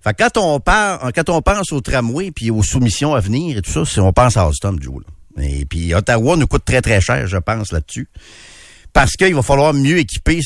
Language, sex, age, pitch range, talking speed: French, male, 50-69, 100-145 Hz, 235 wpm